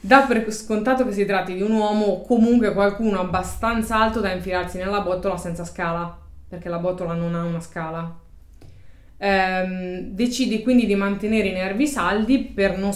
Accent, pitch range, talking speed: native, 175-215 Hz, 170 wpm